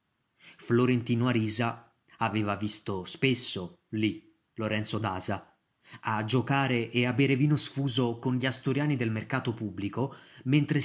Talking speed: 120 wpm